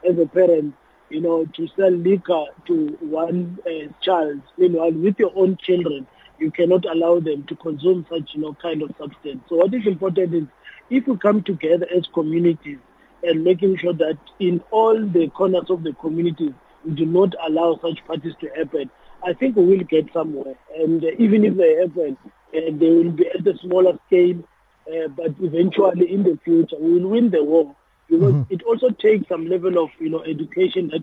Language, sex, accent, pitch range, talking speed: English, male, South African, 160-185 Hz, 200 wpm